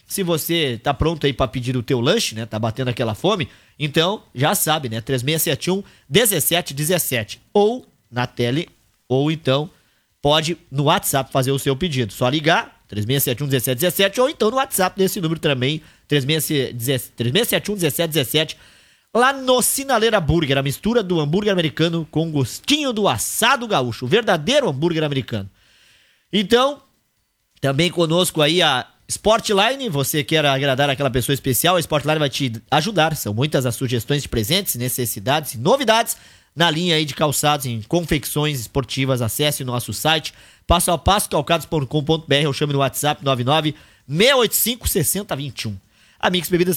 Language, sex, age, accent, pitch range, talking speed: Portuguese, male, 20-39, Brazilian, 135-180 Hz, 145 wpm